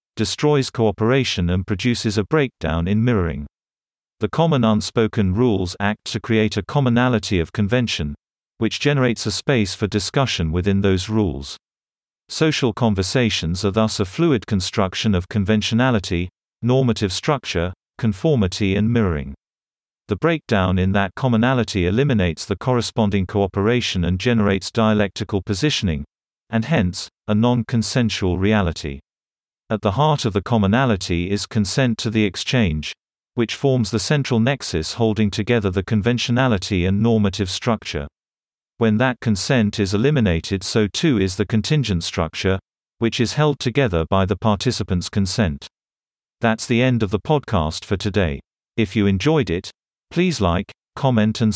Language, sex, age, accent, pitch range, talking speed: English, male, 50-69, British, 95-120 Hz, 135 wpm